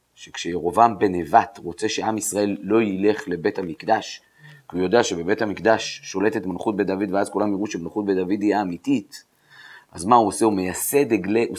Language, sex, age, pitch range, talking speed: Hebrew, male, 40-59, 100-140 Hz, 180 wpm